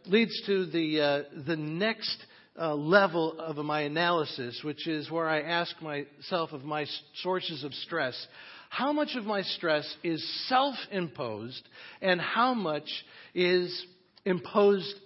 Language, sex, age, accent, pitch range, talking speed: English, male, 50-69, American, 155-220 Hz, 140 wpm